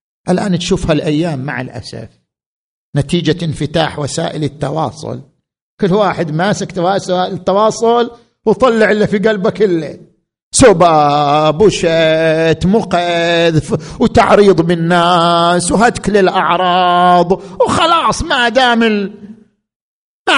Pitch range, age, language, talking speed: 160-240 Hz, 50-69, Arabic, 90 wpm